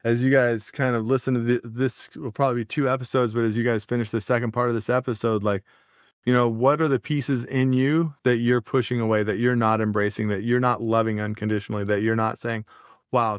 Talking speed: 235 wpm